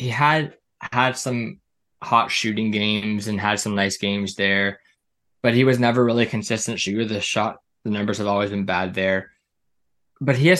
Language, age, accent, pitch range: English, 10-29, American, 100-125 Hz